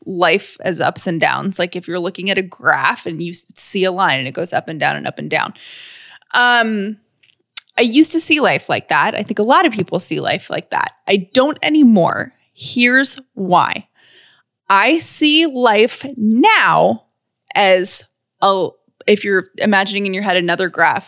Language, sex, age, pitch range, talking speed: English, female, 20-39, 180-240 Hz, 180 wpm